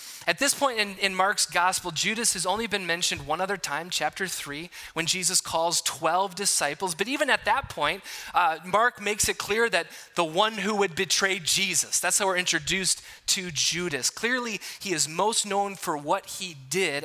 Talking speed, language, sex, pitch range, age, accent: 190 wpm, English, male, 155-215 Hz, 20-39, American